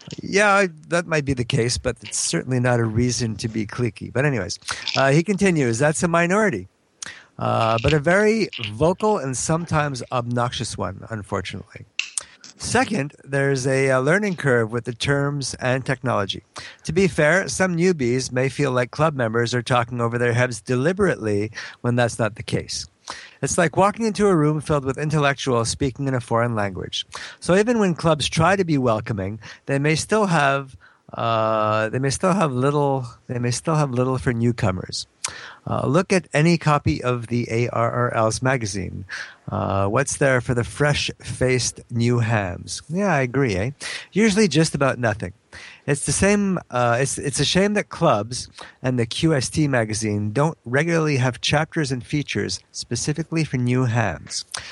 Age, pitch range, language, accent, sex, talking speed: 50-69, 115-155 Hz, English, American, male, 155 wpm